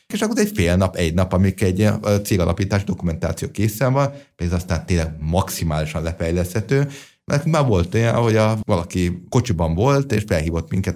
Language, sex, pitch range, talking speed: Hungarian, male, 85-120 Hz, 165 wpm